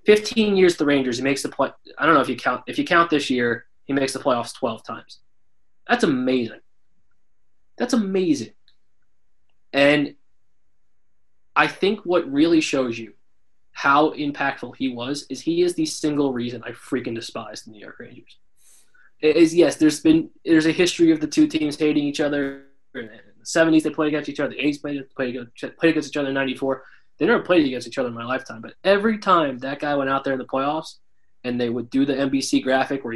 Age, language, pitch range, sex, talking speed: 20-39, English, 120-150 Hz, male, 210 wpm